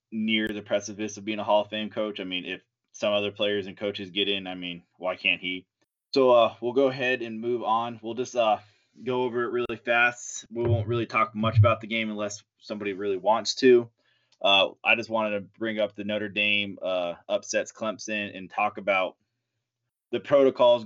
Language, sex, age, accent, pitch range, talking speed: English, male, 20-39, American, 100-115 Hz, 205 wpm